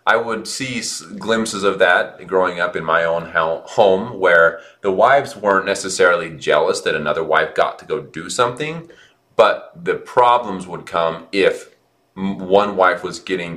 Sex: male